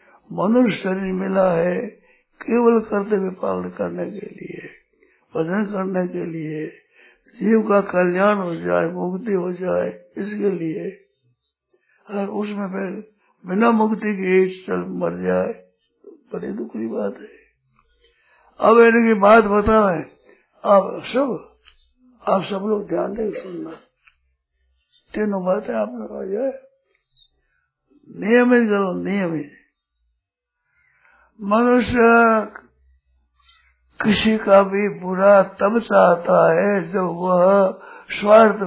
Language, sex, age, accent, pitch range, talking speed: Hindi, male, 60-79, native, 180-225 Hz, 105 wpm